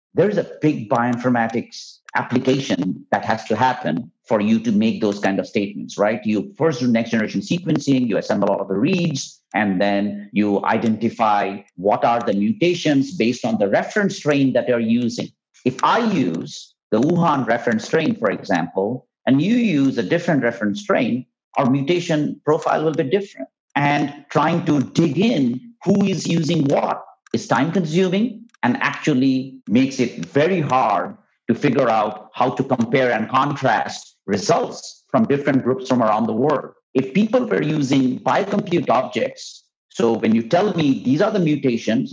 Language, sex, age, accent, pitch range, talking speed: English, male, 50-69, Indian, 120-185 Hz, 170 wpm